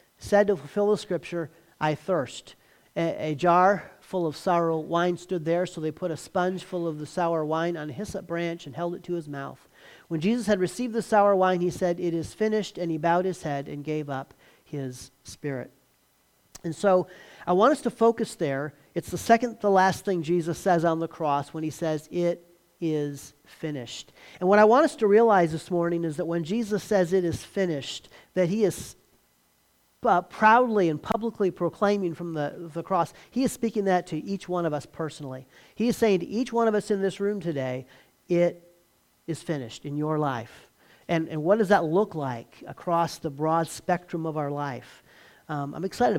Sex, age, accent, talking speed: male, 40-59, American, 205 wpm